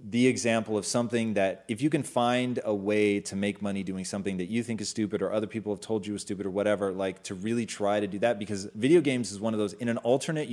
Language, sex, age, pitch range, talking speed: English, male, 30-49, 105-135 Hz, 275 wpm